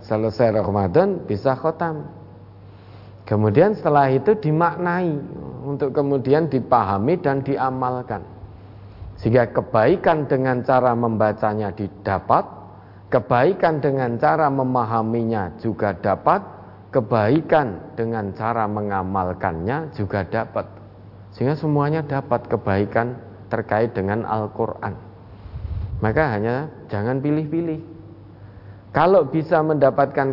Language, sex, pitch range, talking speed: Indonesian, male, 105-135 Hz, 90 wpm